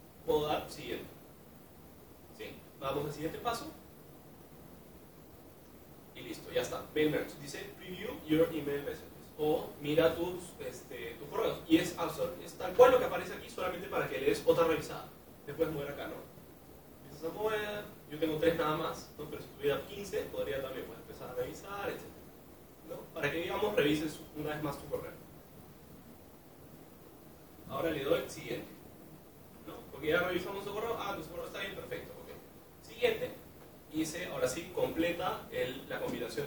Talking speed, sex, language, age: 160 wpm, male, Spanish, 30-49